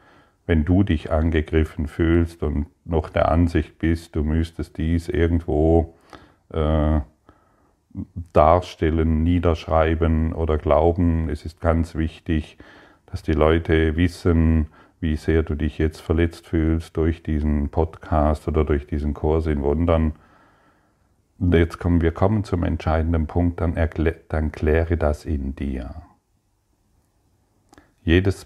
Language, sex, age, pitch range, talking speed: German, male, 50-69, 80-90 Hz, 125 wpm